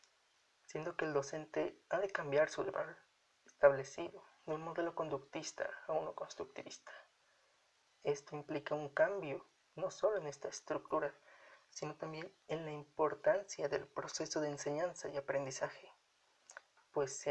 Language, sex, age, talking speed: Spanish, male, 30-49, 140 wpm